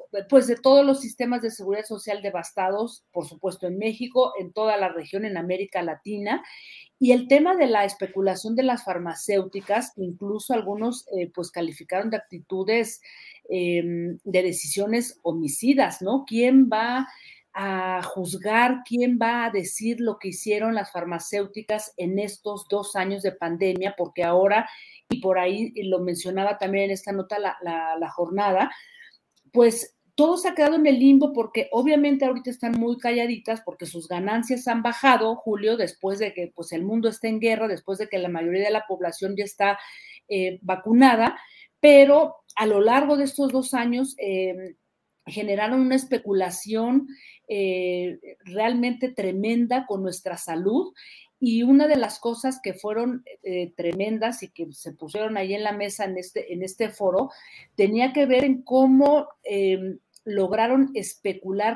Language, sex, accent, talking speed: Spanish, female, Mexican, 160 wpm